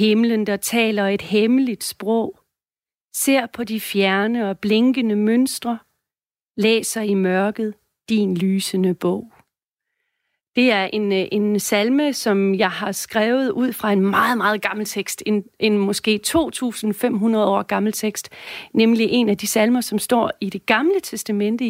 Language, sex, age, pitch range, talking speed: Danish, female, 40-59, 210-245 Hz, 145 wpm